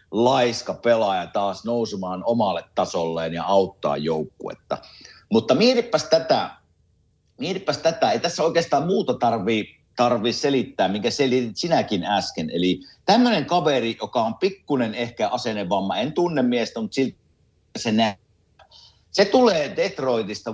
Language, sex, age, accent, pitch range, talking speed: Finnish, male, 50-69, native, 105-160 Hz, 125 wpm